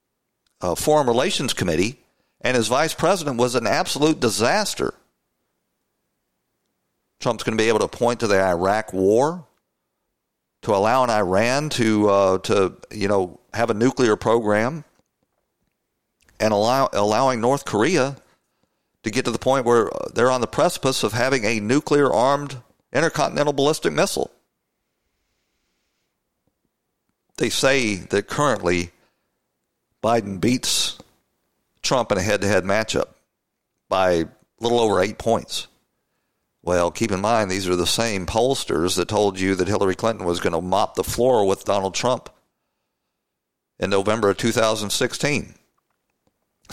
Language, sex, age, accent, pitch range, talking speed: English, male, 50-69, American, 100-125 Hz, 135 wpm